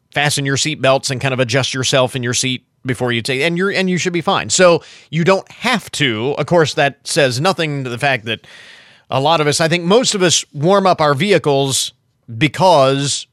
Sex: male